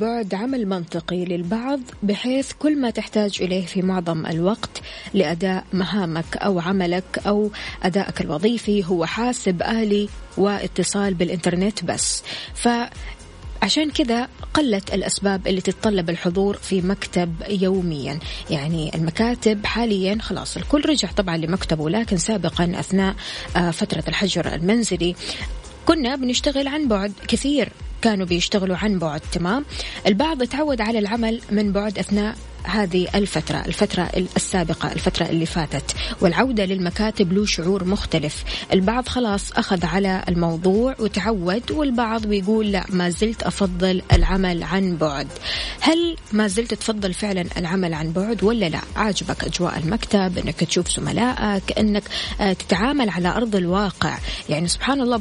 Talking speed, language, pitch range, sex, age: 125 wpm, Arabic, 180-225 Hz, female, 20-39